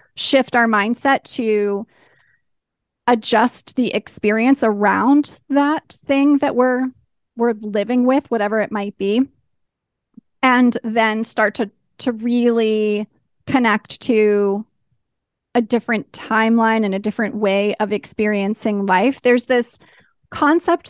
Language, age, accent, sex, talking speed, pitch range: English, 30-49, American, female, 115 wpm, 210-250 Hz